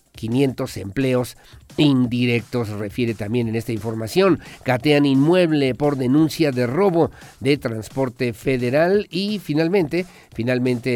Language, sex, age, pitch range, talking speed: Spanish, male, 50-69, 125-160 Hz, 110 wpm